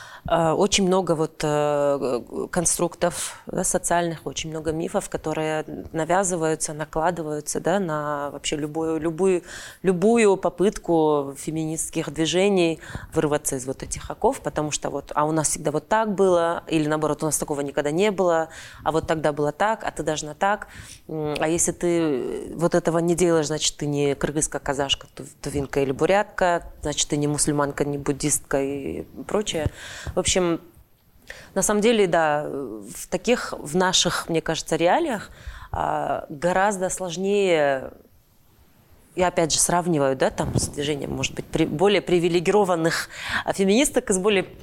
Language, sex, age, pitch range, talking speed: Russian, female, 20-39, 150-185 Hz, 140 wpm